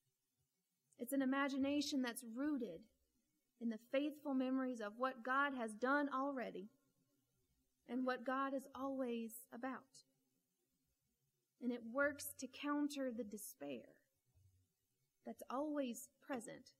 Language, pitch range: English, 220-270 Hz